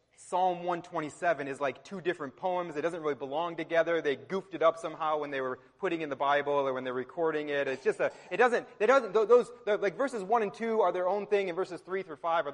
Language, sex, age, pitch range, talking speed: English, male, 30-49, 140-185 Hz, 255 wpm